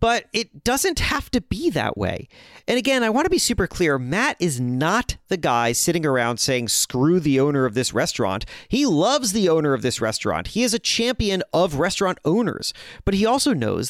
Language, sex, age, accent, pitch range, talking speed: English, male, 40-59, American, 125-190 Hz, 205 wpm